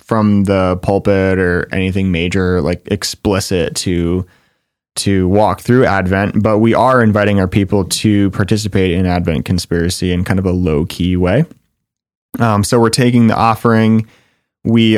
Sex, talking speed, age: male, 150 wpm, 20-39